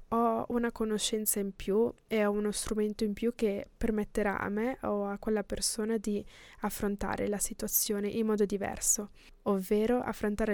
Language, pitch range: Italian, 195-225 Hz